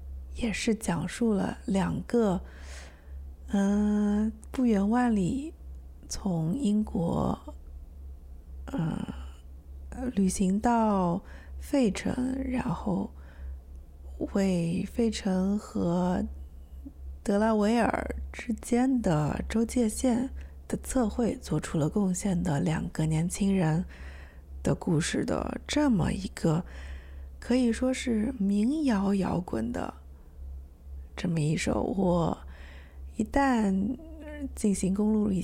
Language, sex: Chinese, female